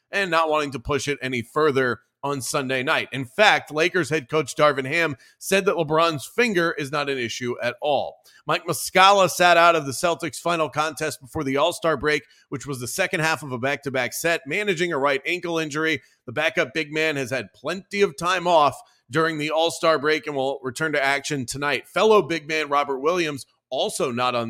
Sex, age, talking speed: male, 30-49, 205 wpm